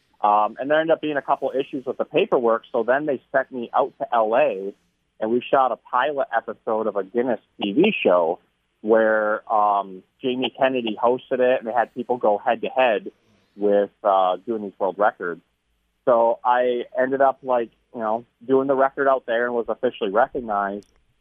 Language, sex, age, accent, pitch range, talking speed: English, male, 30-49, American, 110-130 Hz, 185 wpm